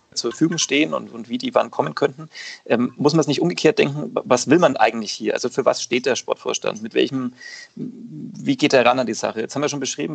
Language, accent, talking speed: German, German, 250 wpm